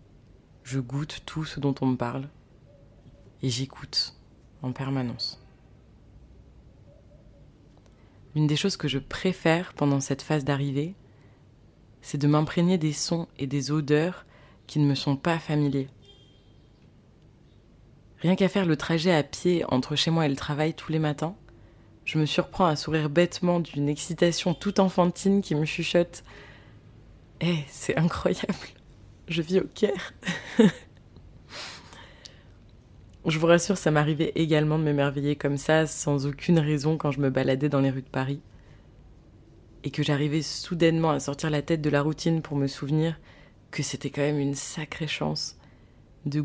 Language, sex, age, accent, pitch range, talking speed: French, female, 20-39, French, 130-155 Hz, 155 wpm